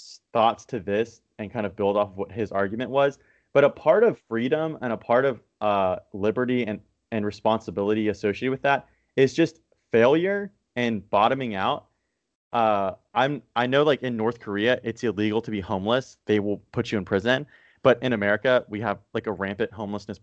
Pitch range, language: 105-130 Hz, English